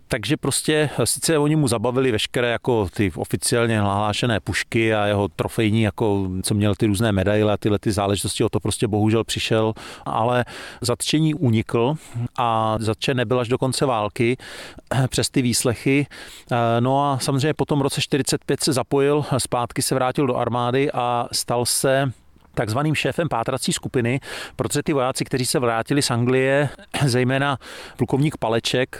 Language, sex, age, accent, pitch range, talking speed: Czech, male, 40-59, native, 115-135 Hz, 155 wpm